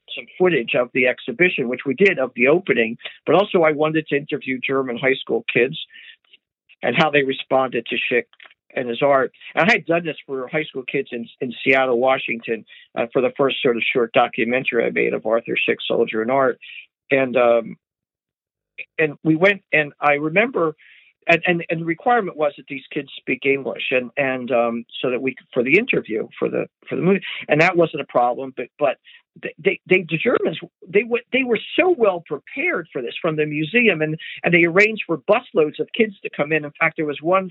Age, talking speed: 50-69, 210 wpm